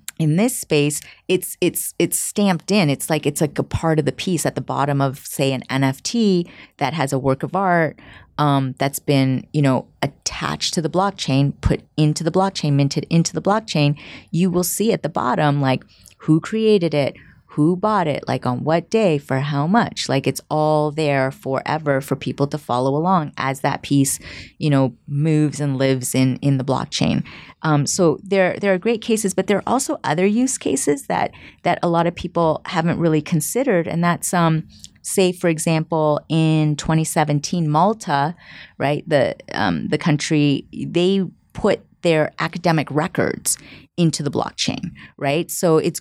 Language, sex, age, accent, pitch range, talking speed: English, female, 30-49, American, 145-185 Hz, 180 wpm